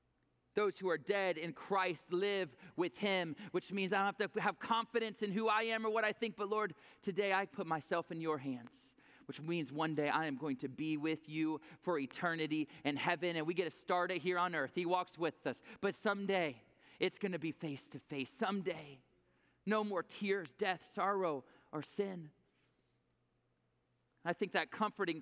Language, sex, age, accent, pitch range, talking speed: English, male, 30-49, American, 175-230 Hz, 195 wpm